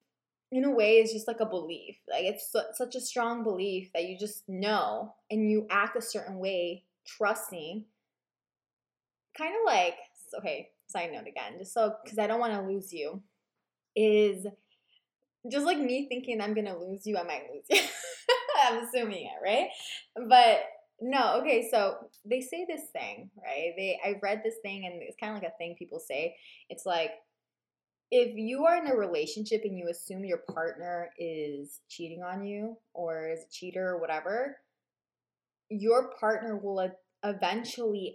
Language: English